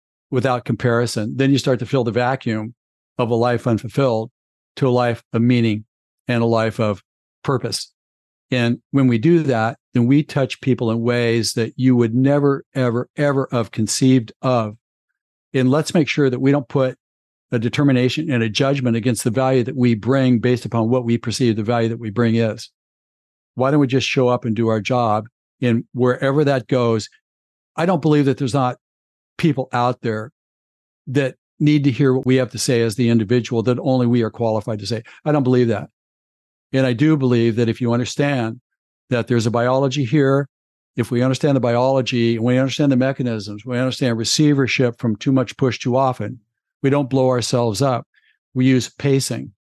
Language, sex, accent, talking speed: English, male, American, 190 wpm